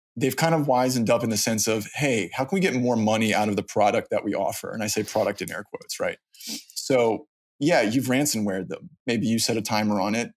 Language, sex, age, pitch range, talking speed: English, male, 20-39, 105-140 Hz, 250 wpm